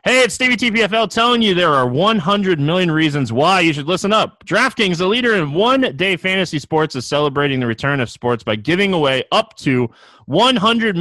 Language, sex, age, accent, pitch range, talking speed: English, male, 30-49, American, 140-200 Hz, 190 wpm